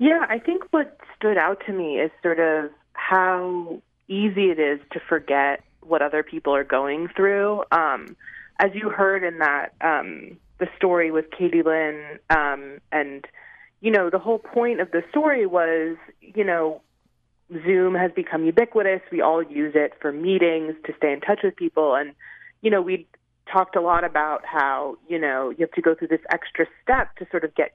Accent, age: American, 30-49